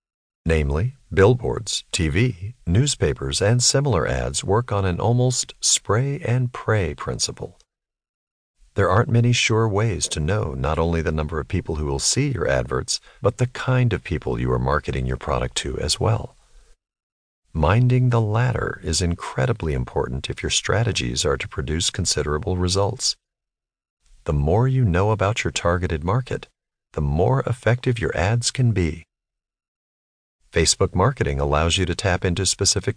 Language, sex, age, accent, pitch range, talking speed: English, male, 50-69, American, 75-115 Hz, 145 wpm